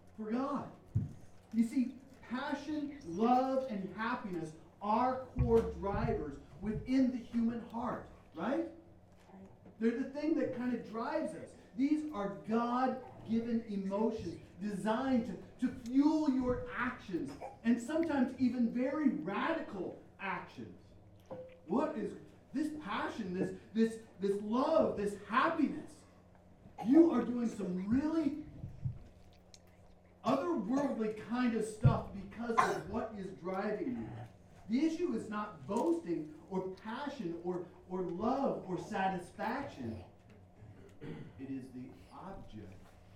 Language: English